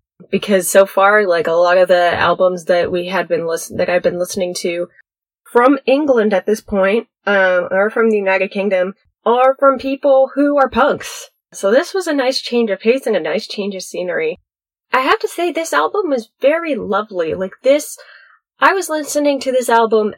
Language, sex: English, female